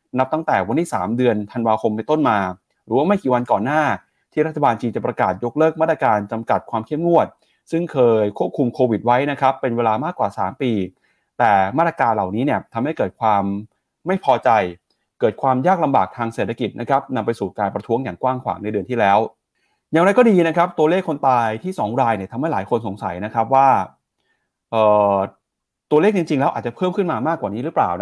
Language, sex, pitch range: Thai, male, 110-140 Hz